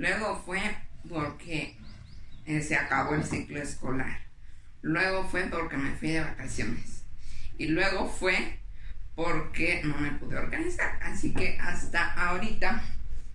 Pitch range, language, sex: 115-180 Hz, Spanish, female